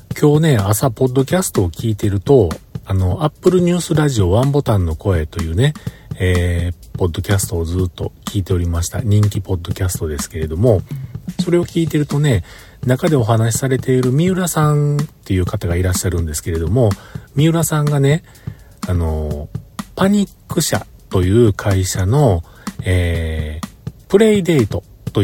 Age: 40-59